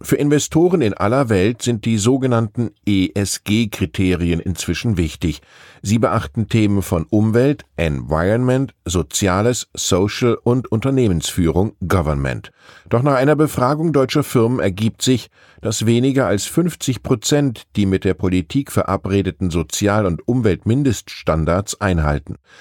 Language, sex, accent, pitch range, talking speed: German, male, German, 90-120 Hz, 115 wpm